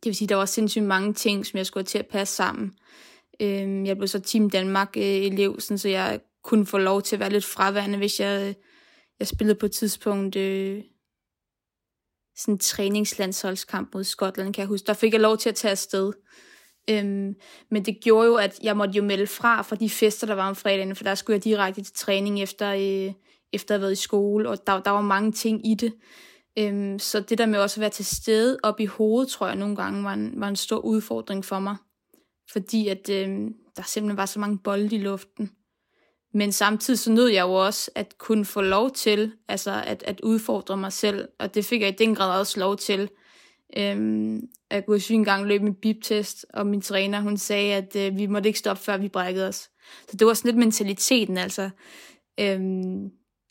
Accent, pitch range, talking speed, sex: native, 195-215 Hz, 210 wpm, female